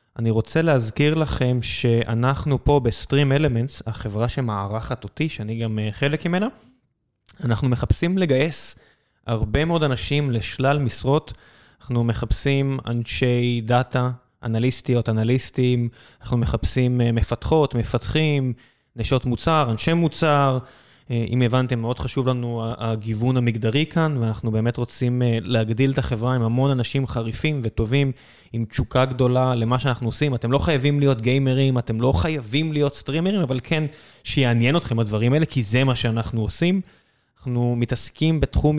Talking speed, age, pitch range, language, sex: 135 wpm, 20-39, 115-140 Hz, Hebrew, male